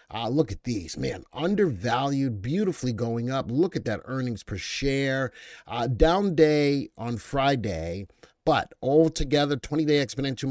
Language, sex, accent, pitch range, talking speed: English, male, American, 115-145 Hz, 135 wpm